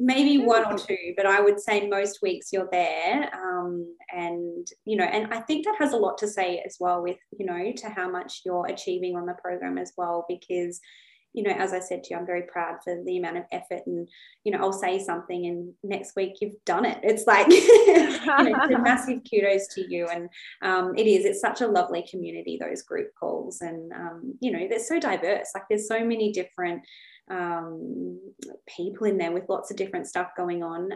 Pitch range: 175-220 Hz